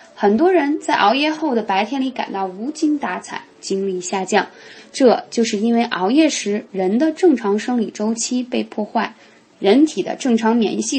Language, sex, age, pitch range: Chinese, female, 20-39, 200-285 Hz